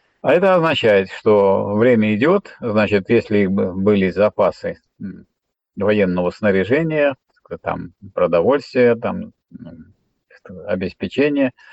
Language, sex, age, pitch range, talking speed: Russian, male, 50-69, 95-125 Hz, 80 wpm